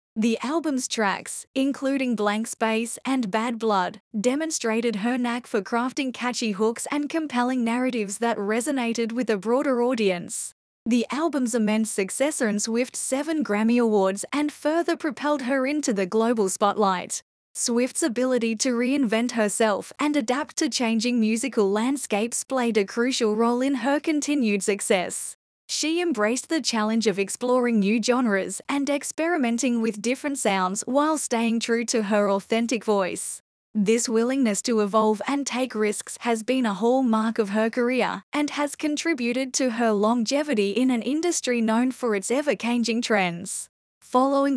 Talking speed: 150 wpm